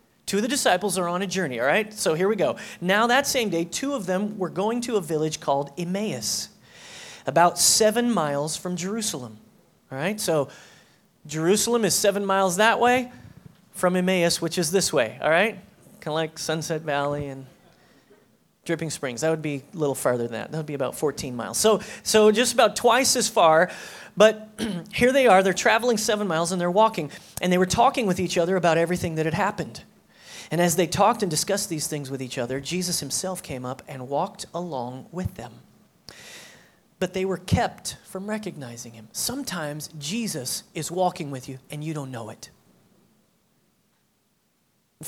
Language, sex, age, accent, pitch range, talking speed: English, male, 30-49, American, 155-205 Hz, 190 wpm